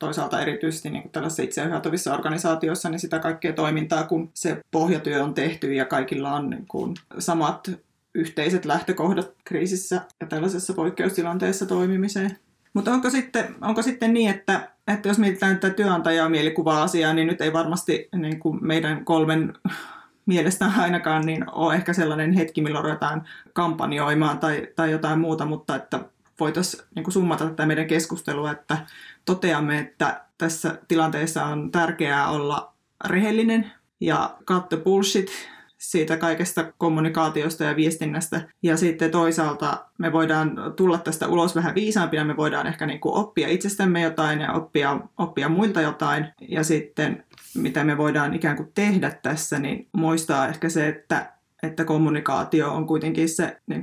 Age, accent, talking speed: 20-39, native, 145 wpm